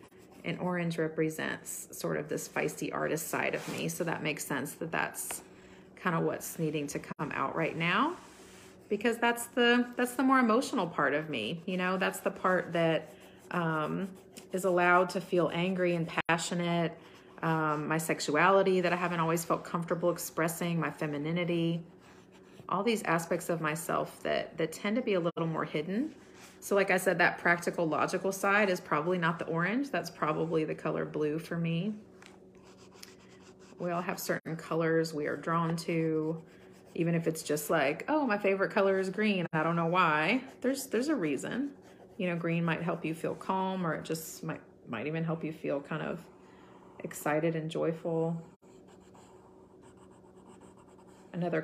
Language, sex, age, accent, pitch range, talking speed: English, female, 30-49, American, 160-190 Hz, 170 wpm